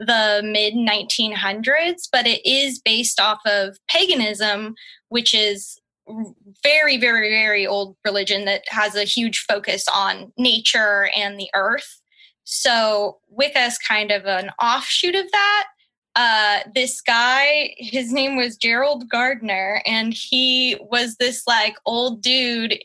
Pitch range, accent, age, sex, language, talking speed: 215-275 Hz, American, 10-29, female, English, 130 wpm